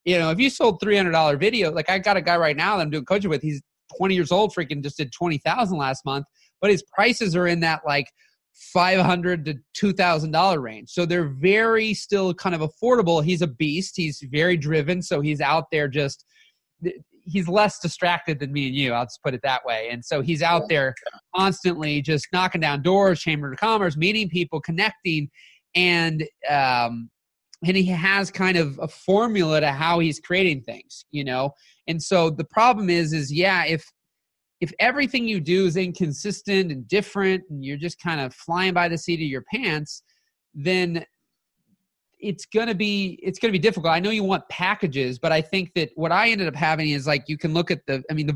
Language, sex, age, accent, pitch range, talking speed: English, male, 30-49, American, 150-190 Hz, 205 wpm